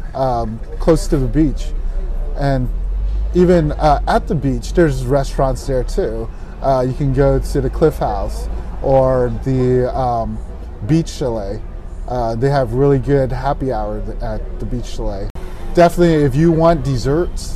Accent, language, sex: American, English, male